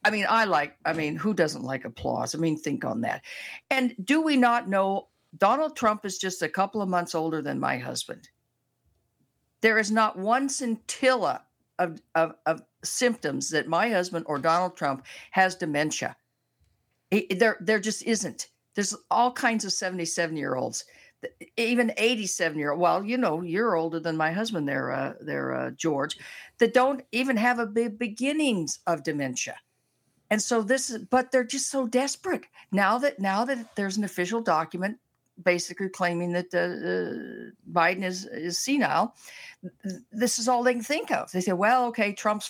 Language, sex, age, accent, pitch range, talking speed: English, female, 50-69, American, 175-240 Hz, 165 wpm